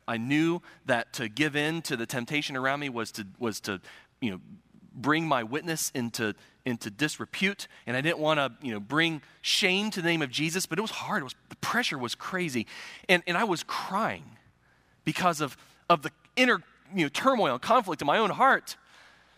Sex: male